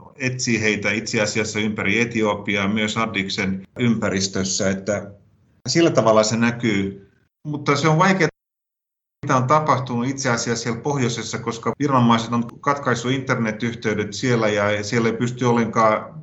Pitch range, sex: 105-125 Hz, male